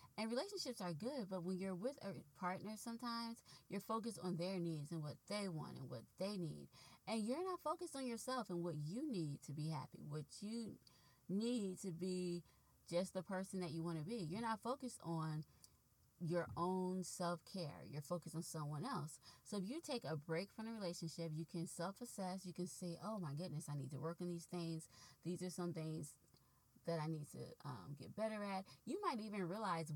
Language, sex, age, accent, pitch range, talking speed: English, female, 20-39, American, 160-195 Hz, 205 wpm